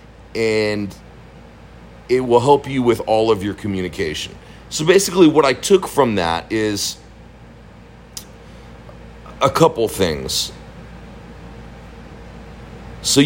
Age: 40-59